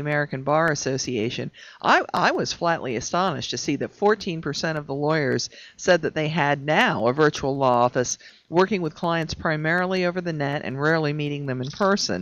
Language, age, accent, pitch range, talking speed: English, 50-69, American, 135-175 Hz, 180 wpm